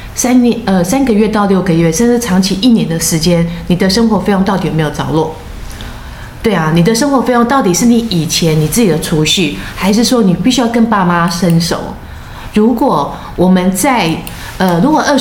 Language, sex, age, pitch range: Chinese, female, 30-49, 170-230 Hz